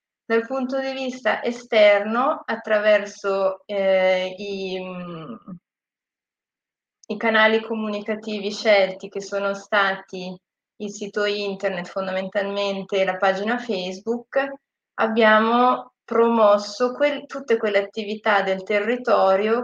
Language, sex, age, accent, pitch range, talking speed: Italian, female, 20-39, native, 195-215 Hz, 90 wpm